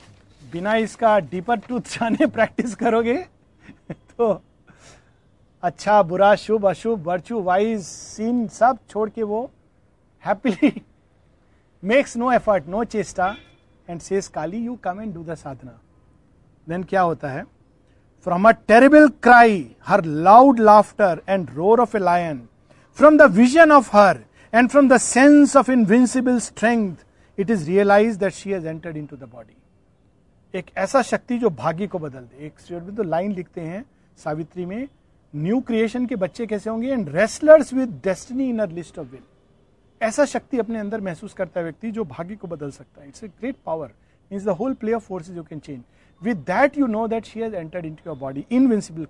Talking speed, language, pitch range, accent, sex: 125 wpm, Hindi, 165-235 Hz, native, male